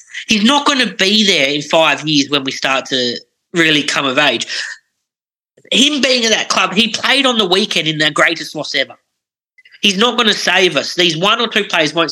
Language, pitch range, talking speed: English, 165-220 Hz, 220 wpm